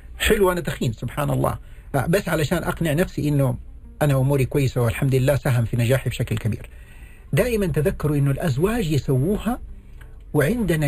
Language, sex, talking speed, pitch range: Arabic, male, 145 wpm, 120-160 Hz